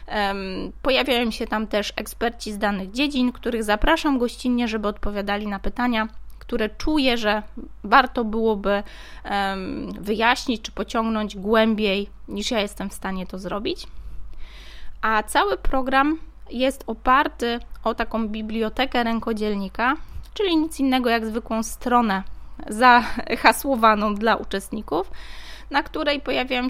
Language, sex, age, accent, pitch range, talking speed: Polish, female, 20-39, native, 210-255 Hz, 115 wpm